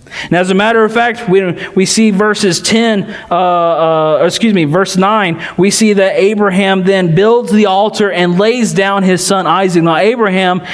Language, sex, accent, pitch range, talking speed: English, male, American, 195-230 Hz, 185 wpm